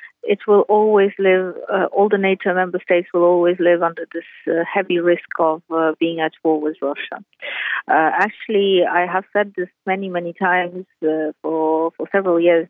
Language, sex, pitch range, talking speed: English, female, 165-200 Hz, 185 wpm